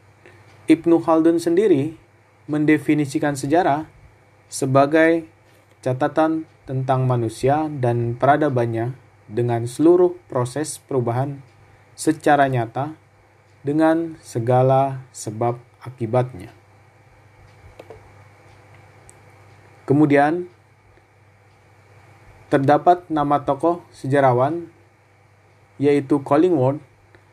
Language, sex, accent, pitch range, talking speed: Indonesian, male, native, 110-145 Hz, 60 wpm